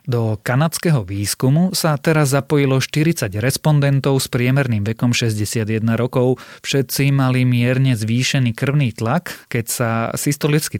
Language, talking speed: Slovak, 120 wpm